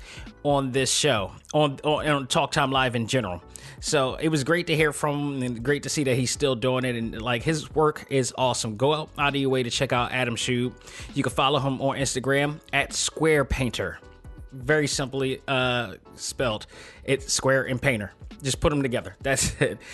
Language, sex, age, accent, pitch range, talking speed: English, male, 20-39, American, 125-150 Hz, 205 wpm